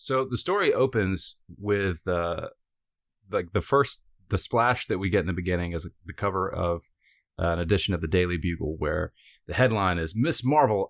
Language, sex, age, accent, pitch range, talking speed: English, male, 30-49, American, 85-105 Hz, 195 wpm